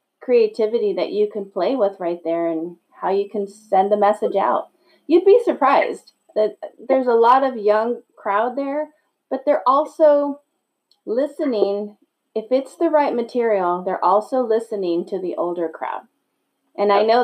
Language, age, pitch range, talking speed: English, 30-49, 205-285 Hz, 160 wpm